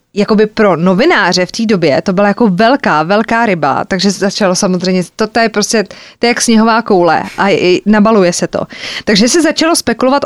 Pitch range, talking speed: 190-235 Hz, 200 wpm